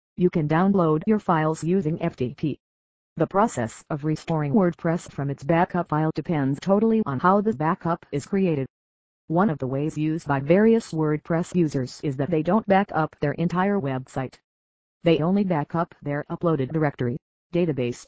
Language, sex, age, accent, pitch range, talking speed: English, female, 40-59, American, 140-180 Hz, 160 wpm